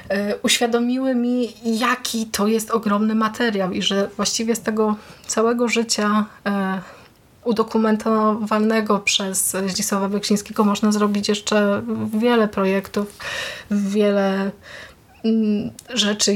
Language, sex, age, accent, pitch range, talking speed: Polish, female, 30-49, native, 195-225 Hz, 90 wpm